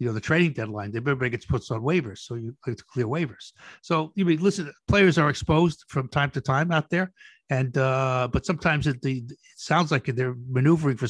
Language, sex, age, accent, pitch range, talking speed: English, male, 60-79, American, 125-165 Hz, 220 wpm